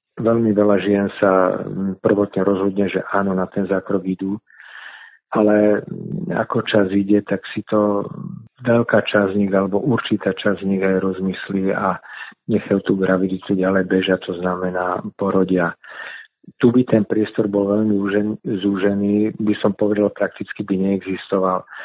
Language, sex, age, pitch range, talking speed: Slovak, male, 40-59, 95-105 Hz, 145 wpm